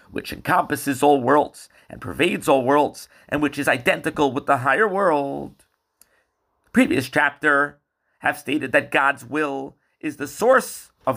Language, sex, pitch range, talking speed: English, male, 140-200 Hz, 145 wpm